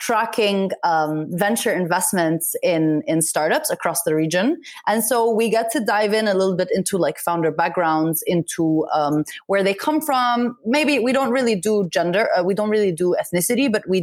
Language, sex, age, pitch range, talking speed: English, female, 30-49, 185-240 Hz, 190 wpm